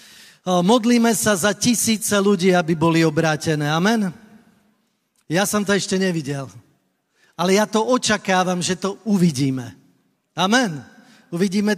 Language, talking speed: Slovak, 115 wpm